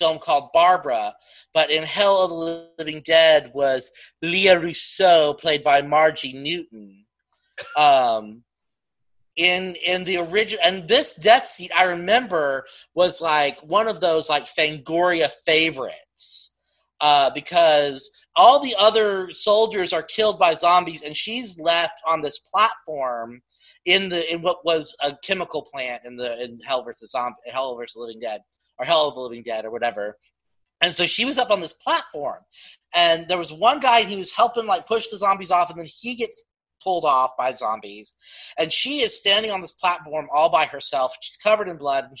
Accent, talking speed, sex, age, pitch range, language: American, 180 wpm, male, 30-49, 150-215 Hz, English